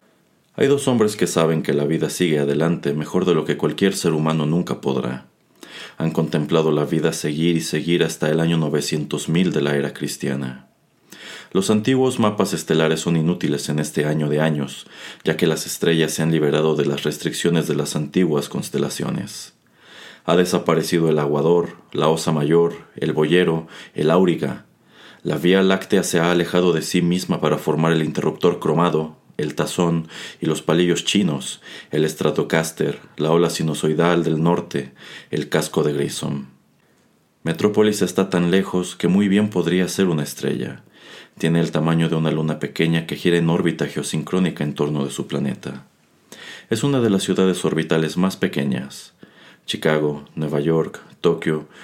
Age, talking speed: 40-59, 165 wpm